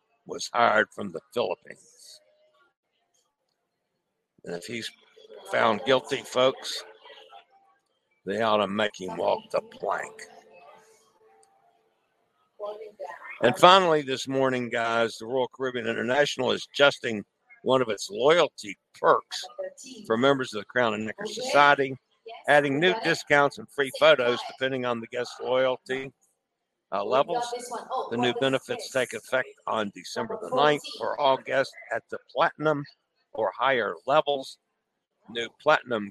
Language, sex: English, male